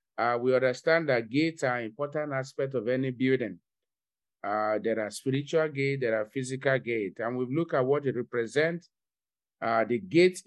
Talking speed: 180 wpm